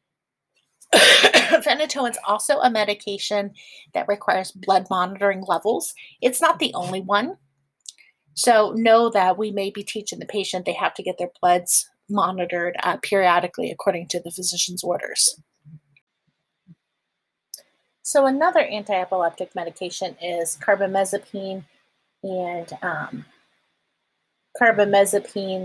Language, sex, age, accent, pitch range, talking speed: English, female, 30-49, American, 180-215 Hz, 110 wpm